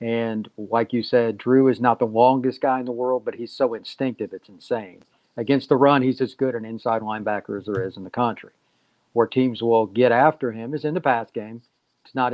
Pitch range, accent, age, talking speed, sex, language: 115-135 Hz, American, 50-69, 230 wpm, male, English